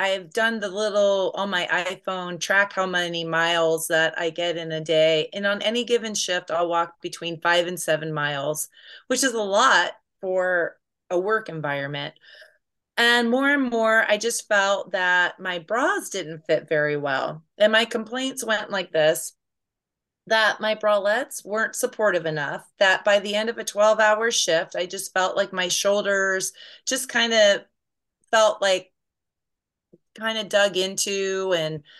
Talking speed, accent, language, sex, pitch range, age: 165 wpm, American, English, female, 170-215 Hz, 30-49